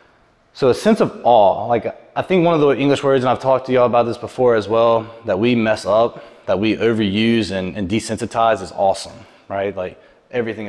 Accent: American